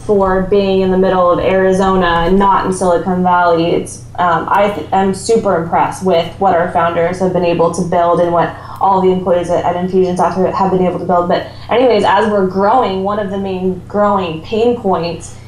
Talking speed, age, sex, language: 210 wpm, 10-29, female, English